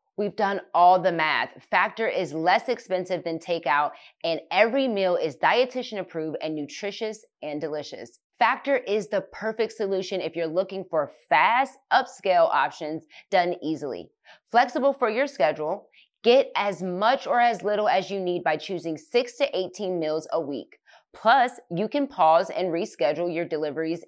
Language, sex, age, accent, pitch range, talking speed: English, female, 20-39, American, 170-240 Hz, 160 wpm